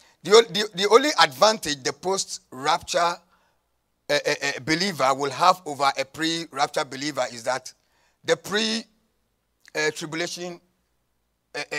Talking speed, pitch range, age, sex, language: 125 wpm, 115-170 Hz, 50-69, male, English